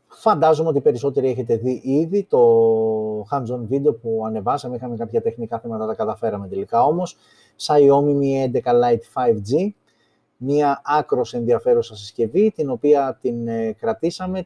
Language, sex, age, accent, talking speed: Greek, male, 30-49, native, 135 wpm